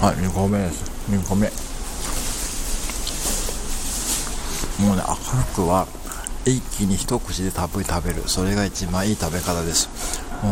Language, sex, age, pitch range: Japanese, male, 60-79, 85-110 Hz